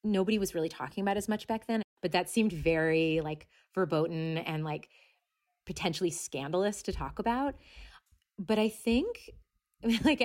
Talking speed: 150 wpm